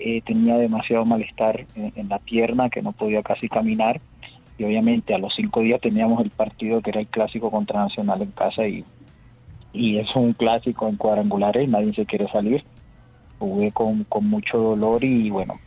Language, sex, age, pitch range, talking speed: Spanish, male, 30-49, 110-125 Hz, 190 wpm